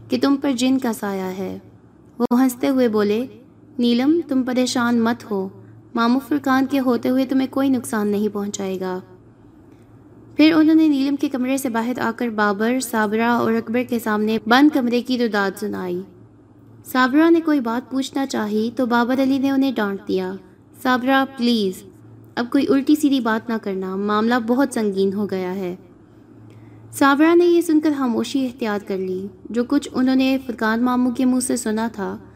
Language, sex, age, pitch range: Urdu, female, 20-39, 215-275 Hz